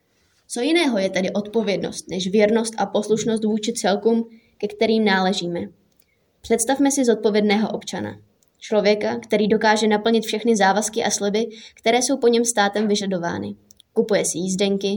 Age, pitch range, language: 20-39, 195-230 Hz, Czech